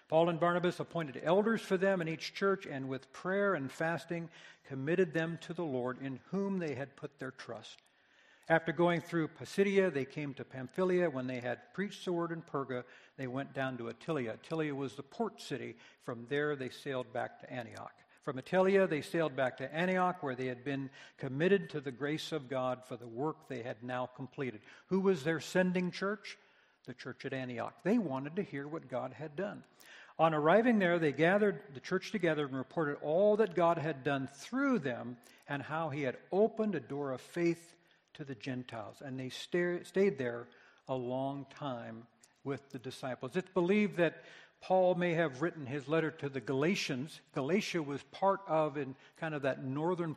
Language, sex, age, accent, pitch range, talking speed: English, male, 60-79, American, 130-175 Hz, 195 wpm